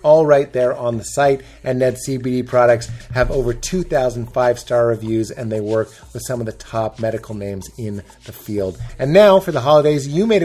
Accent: American